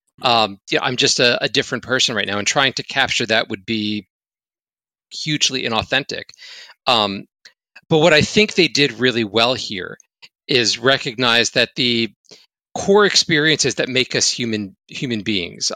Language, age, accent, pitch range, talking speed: English, 40-59, American, 110-140 Hz, 155 wpm